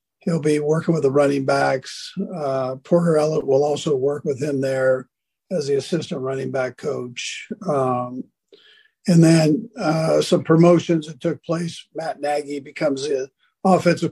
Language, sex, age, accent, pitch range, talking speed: English, male, 50-69, American, 145-175 Hz, 155 wpm